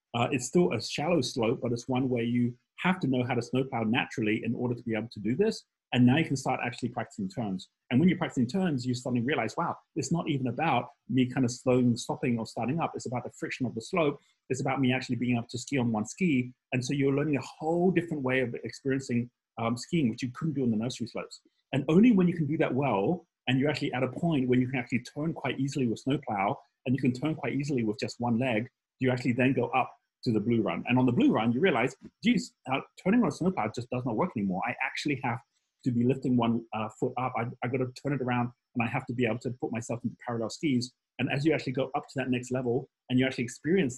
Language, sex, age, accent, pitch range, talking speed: English, male, 30-49, British, 120-140 Hz, 265 wpm